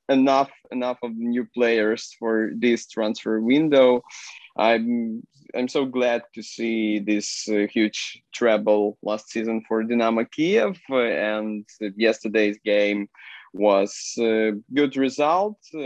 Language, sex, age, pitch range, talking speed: English, male, 20-39, 110-130 Hz, 130 wpm